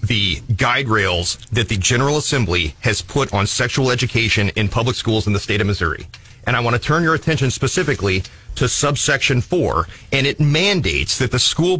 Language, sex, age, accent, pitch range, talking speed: English, male, 30-49, American, 110-140 Hz, 190 wpm